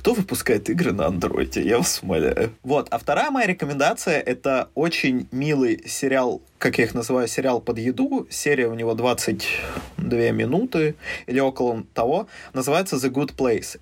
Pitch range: 120-145 Hz